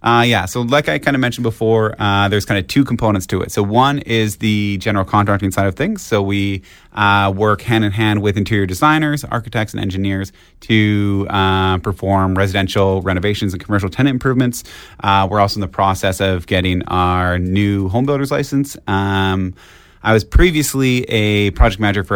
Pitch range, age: 95-110 Hz, 30-49